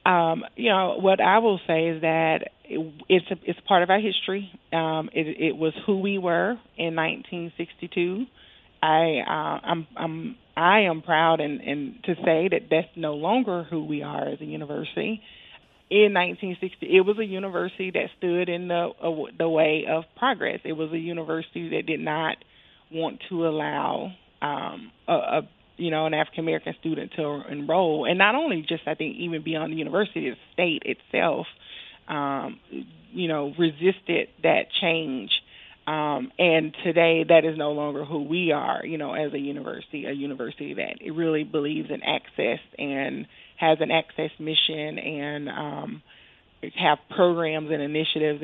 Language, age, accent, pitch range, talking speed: English, 20-39, American, 155-175 Hz, 165 wpm